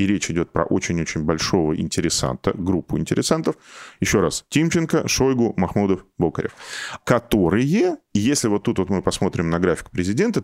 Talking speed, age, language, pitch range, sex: 140 wpm, 20-39, Russian, 90-120 Hz, male